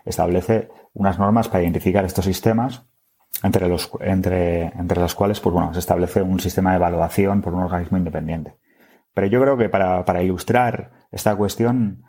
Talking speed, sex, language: 150 wpm, male, Spanish